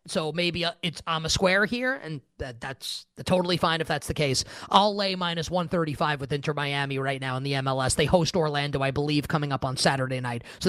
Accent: American